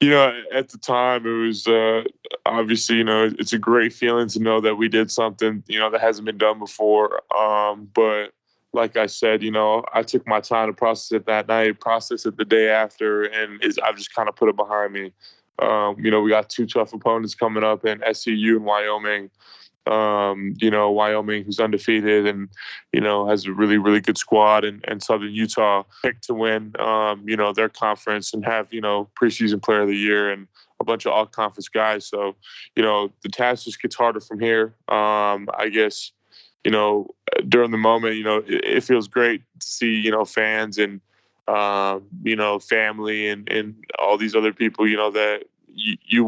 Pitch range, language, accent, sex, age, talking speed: 105-115 Hz, English, American, male, 20-39, 200 wpm